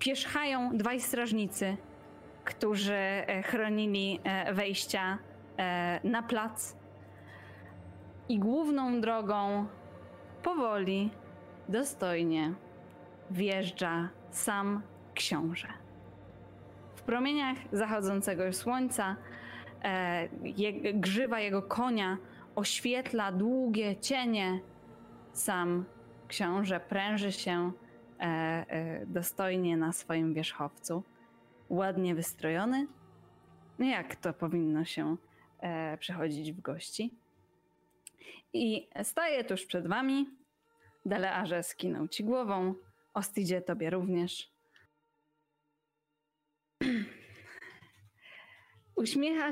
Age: 20-39